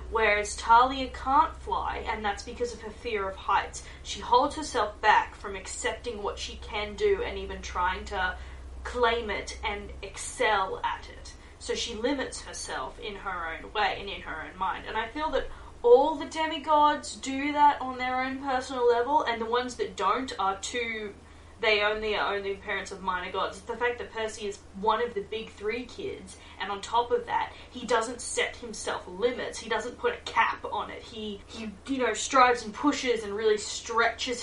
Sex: female